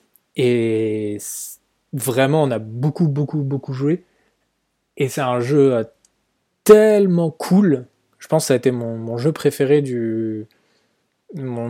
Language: French